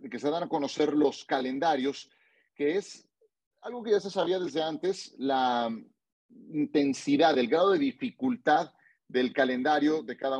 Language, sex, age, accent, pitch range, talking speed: Spanish, male, 40-59, Mexican, 135-185 Hz, 150 wpm